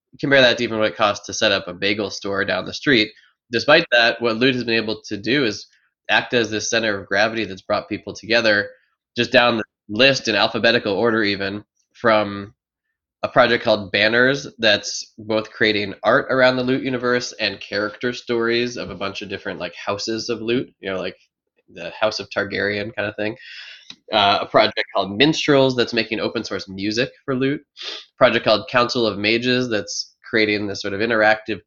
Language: English